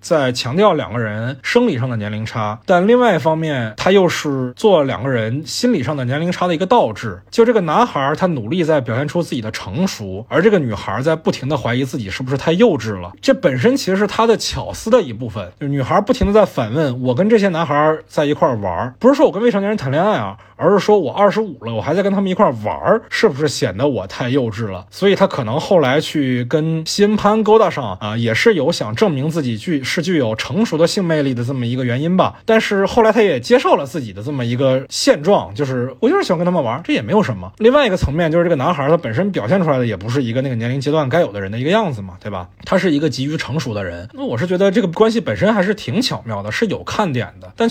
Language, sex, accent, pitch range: Chinese, male, native, 125-190 Hz